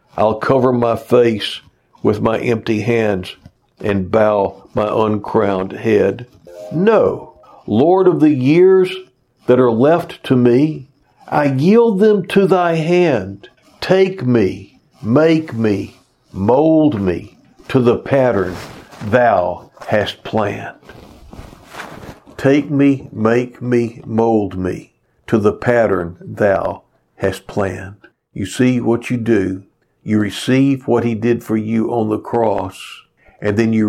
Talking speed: 125 wpm